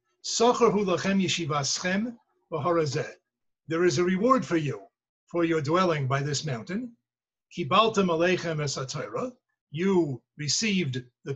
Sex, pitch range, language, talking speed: male, 155-195 Hz, English, 120 wpm